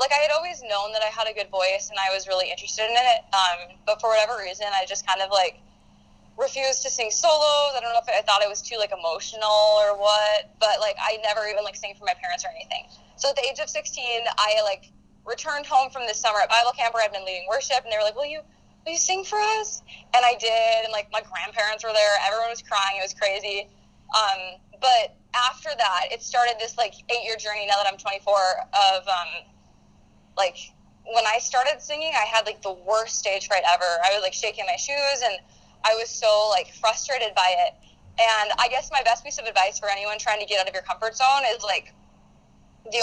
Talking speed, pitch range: 230 wpm, 200-265 Hz